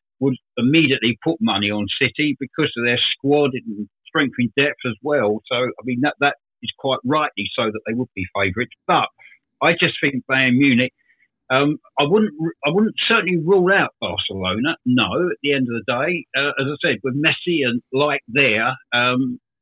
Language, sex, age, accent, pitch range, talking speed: English, male, 50-69, British, 115-150 Hz, 190 wpm